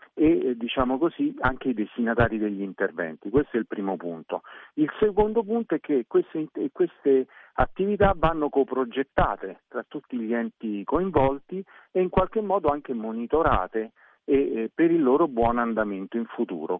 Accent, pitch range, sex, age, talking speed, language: native, 115-170 Hz, male, 50-69, 150 wpm, Italian